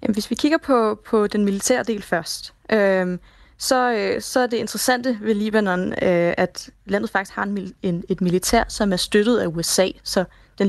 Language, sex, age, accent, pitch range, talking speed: Danish, female, 20-39, native, 190-245 Hz, 185 wpm